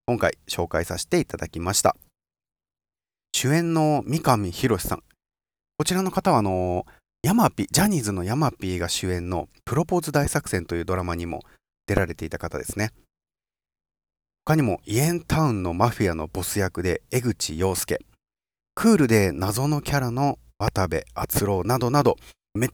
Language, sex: Japanese, male